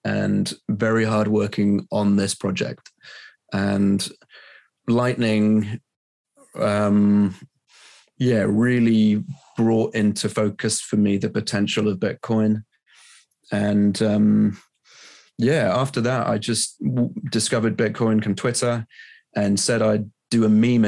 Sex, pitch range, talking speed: male, 105-115 Hz, 110 wpm